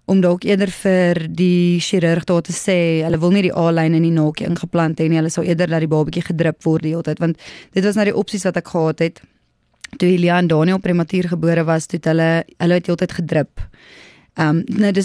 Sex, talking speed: female, 225 wpm